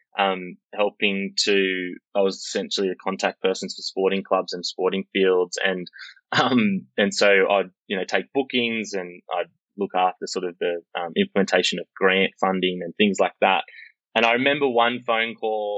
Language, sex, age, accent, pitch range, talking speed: English, male, 20-39, Australian, 95-115 Hz, 175 wpm